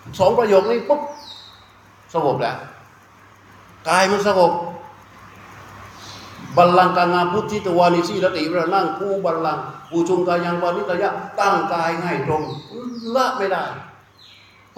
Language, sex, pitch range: Thai, male, 130-185 Hz